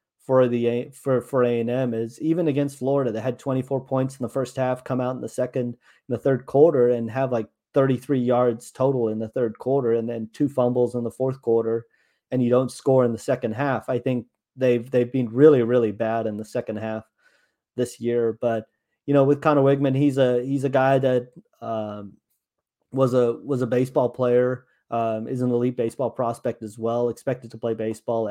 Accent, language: American, English